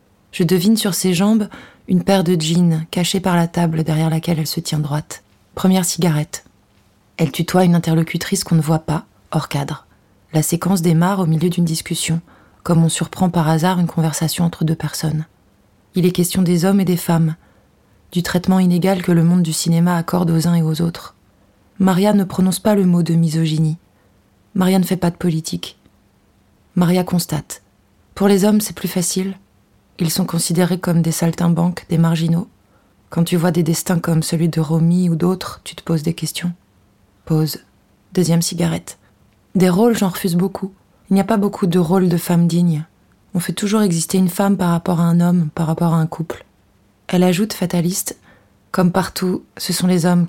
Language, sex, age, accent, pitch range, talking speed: French, female, 20-39, French, 155-180 Hz, 190 wpm